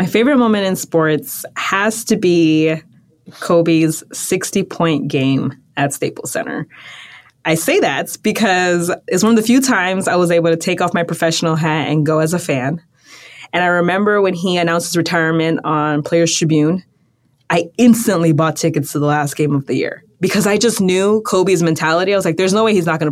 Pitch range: 150-190 Hz